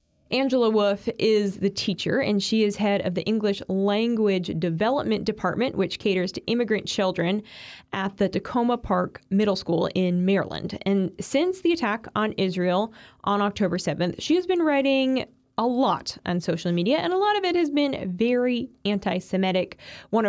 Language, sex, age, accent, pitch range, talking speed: English, female, 20-39, American, 175-215 Hz, 165 wpm